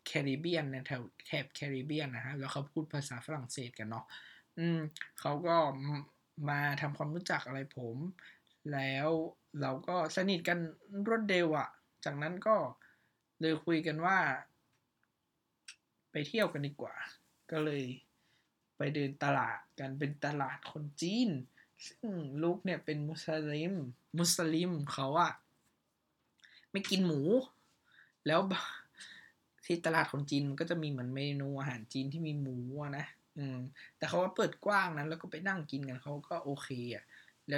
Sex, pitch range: male, 135-160 Hz